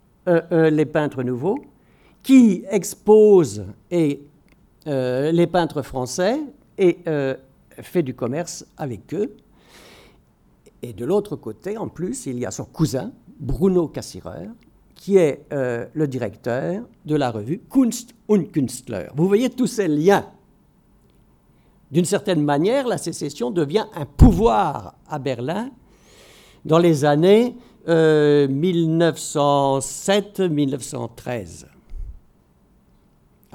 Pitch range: 135-185 Hz